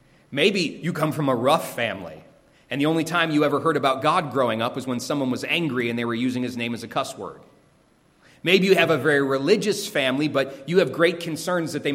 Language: English